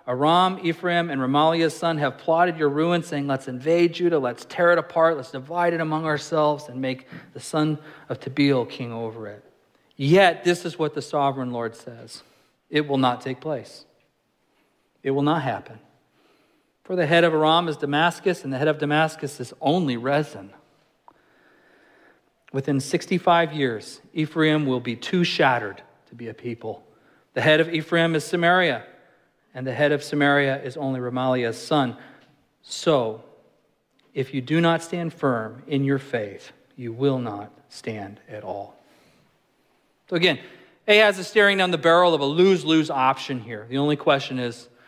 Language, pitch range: English, 125-165 Hz